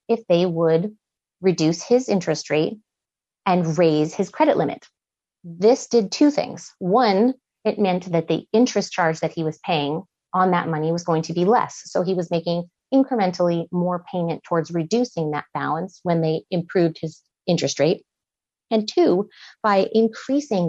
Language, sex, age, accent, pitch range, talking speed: English, female, 30-49, American, 165-215 Hz, 160 wpm